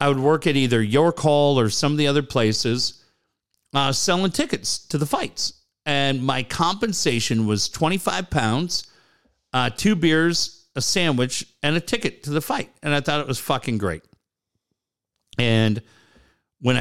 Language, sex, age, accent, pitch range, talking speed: English, male, 50-69, American, 115-160 Hz, 155 wpm